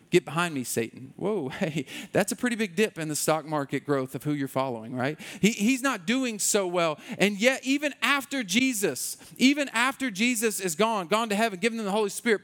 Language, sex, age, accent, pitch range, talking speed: English, male, 40-59, American, 180-240 Hz, 215 wpm